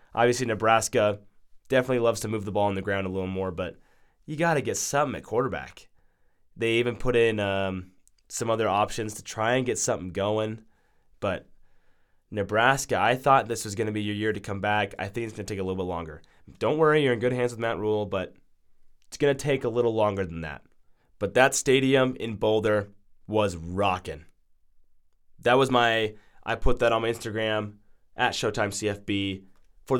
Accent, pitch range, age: American, 95-120 Hz, 20-39